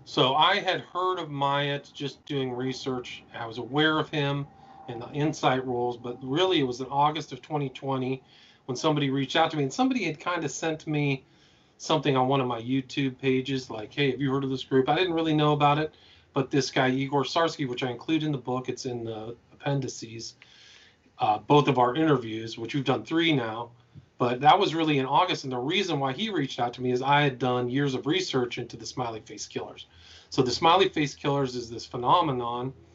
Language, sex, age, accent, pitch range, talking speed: English, male, 40-59, American, 120-145 Hz, 220 wpm